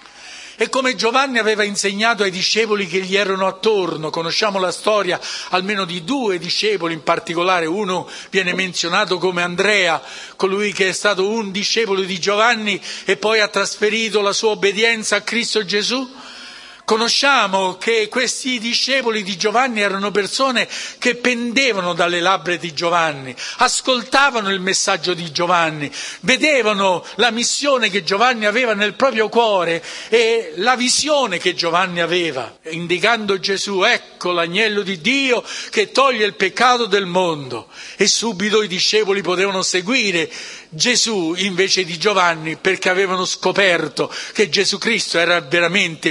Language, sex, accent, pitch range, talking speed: Italian, male, native, 180-235 Hz, 140 wpm